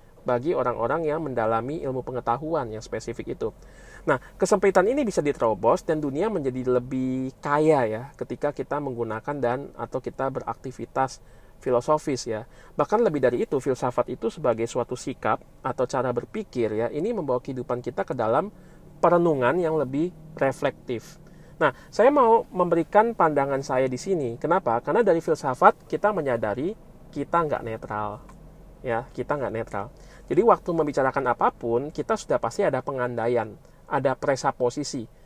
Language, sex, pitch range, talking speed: Indonesian, male, 120-155 Hz, 145 wpm